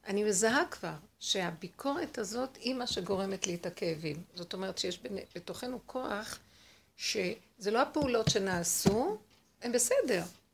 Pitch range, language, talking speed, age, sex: 180-230 Hz, Hebrew, 125 wpm, 60-79, female